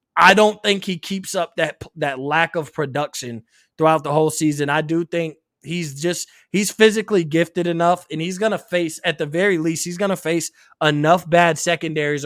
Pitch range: 155-200 Hz